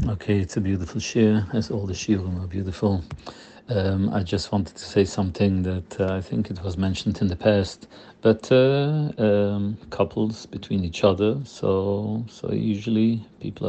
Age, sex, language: 50-69, male, English